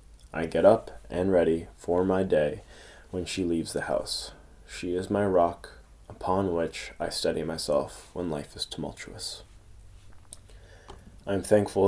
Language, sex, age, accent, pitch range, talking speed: English, male, 20-39, American, 80-95 Hz, 140 wpm